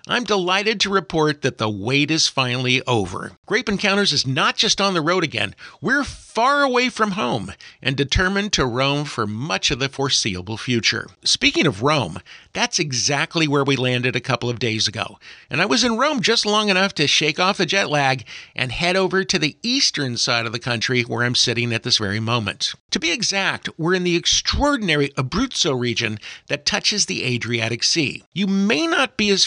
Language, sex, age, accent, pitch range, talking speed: English, male, 50-69, American, 125-195 Hz, 200 wpm